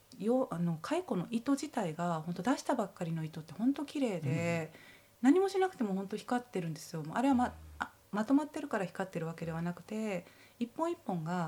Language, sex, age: Japanese, female, 30-49